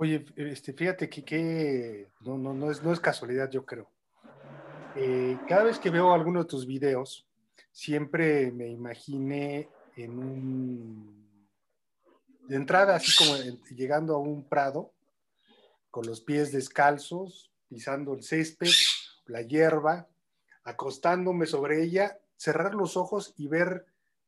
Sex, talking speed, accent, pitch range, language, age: male, 125 wpm, Mexican, 135-170 Hz, Spanish, 40-59